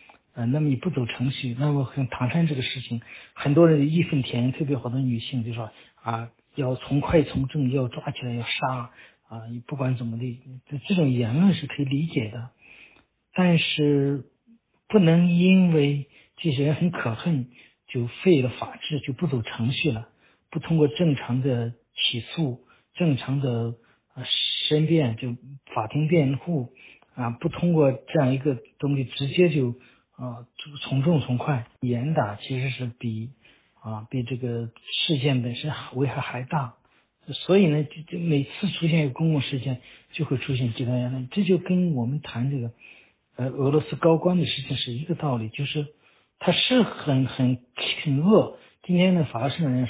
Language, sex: Chinese, male